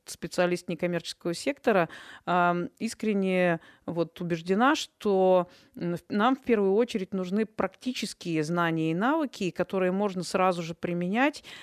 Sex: female